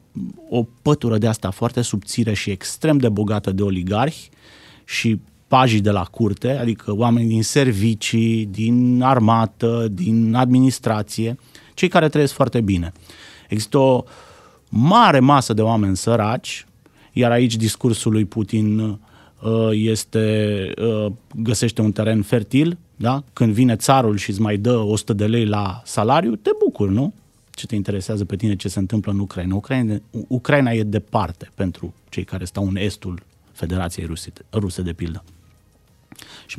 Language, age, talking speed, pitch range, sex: Romanian, 30-49, 145 wpm, 105-120 Hz, male